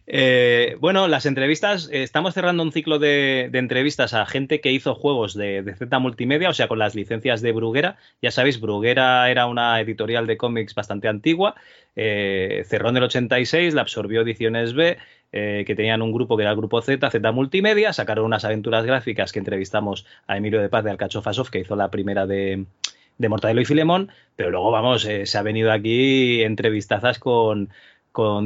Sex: male